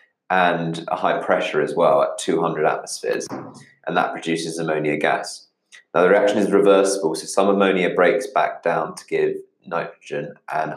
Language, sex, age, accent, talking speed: English, male, 20-39, British, 160 wpm